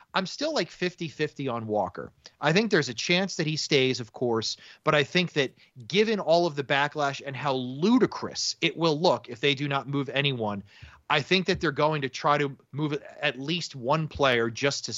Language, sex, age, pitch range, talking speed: English, male, 30-49, 120-150 Hz, 210 wpm